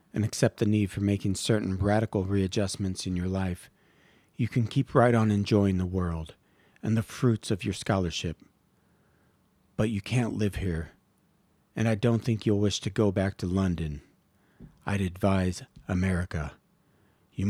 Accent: American